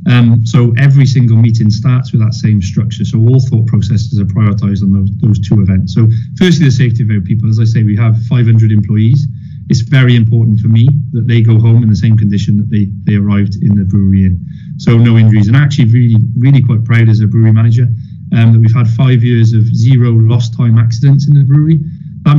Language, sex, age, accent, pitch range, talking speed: English, male, 30-49, British, 110-130 Hz, 225 wpm